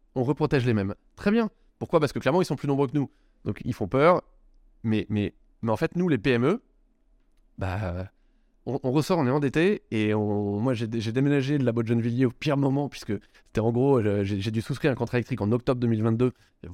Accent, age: French, 20-39